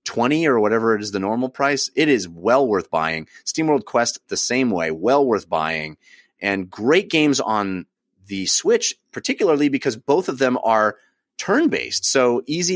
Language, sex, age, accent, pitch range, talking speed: English, male, 30-49, American, 100-140 Hz, 170 wpm